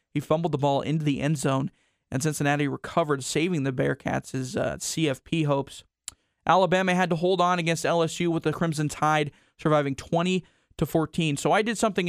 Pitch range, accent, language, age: 145-170 Hz, American, English, 20-39